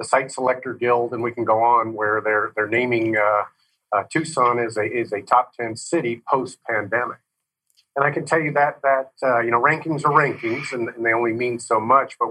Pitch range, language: 115-140 Hz, English